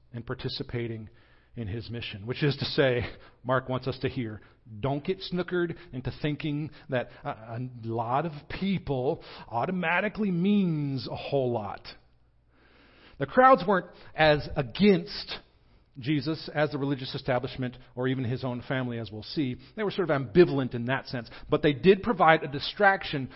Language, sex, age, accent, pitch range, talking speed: English, male, 40-59, American, 120-170 Hz, 160 wpm